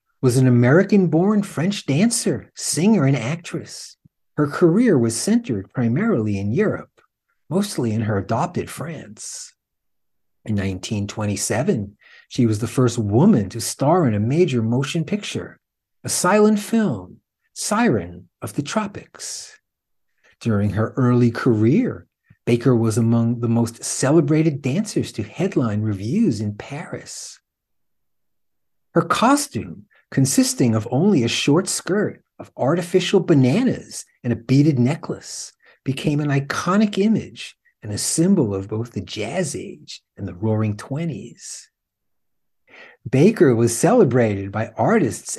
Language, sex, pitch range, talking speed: English, male, 115-175 Hz, 125 wpm